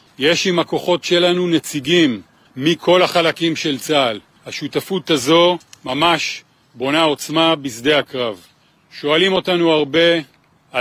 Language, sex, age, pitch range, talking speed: Hebrew, male, 40-59, 145-165 Hz, 105 wpm